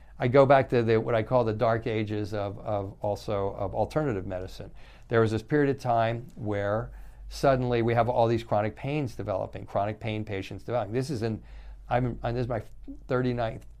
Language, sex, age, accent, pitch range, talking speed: English, male, 50-69, American, 100-130 Hz, 190 wpm